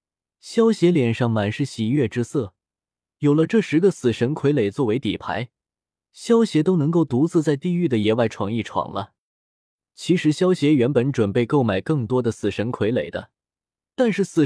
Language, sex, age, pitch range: Chinese, male, 20-39, 115-160 Hz